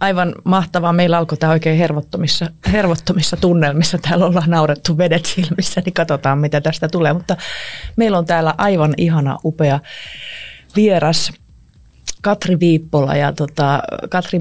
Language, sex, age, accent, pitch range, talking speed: Finnish, female, 30-49, native, 145-175 Hz, 125 wpm